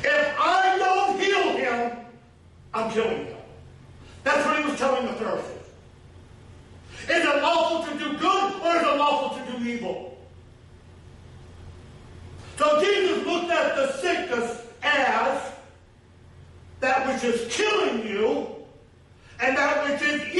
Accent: American